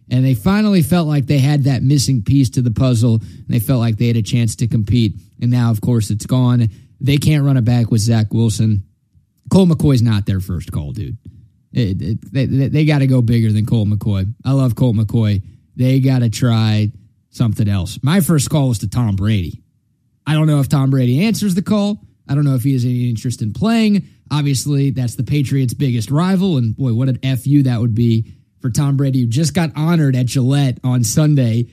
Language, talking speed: English, 220 wpm